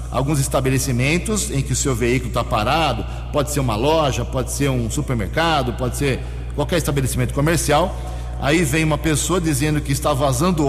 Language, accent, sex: Portuguese, Brazilian, male